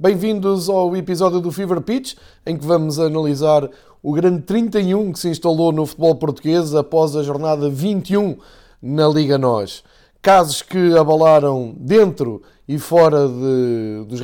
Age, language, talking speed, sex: 20-39, Portuguese, 140 wpm, male